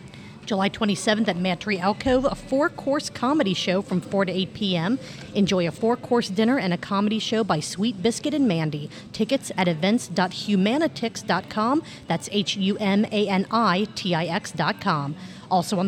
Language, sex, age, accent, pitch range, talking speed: English, female, 40-59, American, 185-235 Hz, 130 wpm